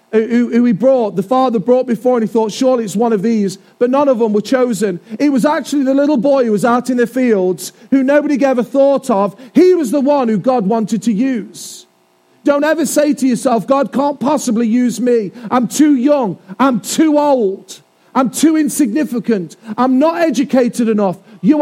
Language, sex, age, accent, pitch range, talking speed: English, male, 40-59, British, 215-265 Hz, 200 wpm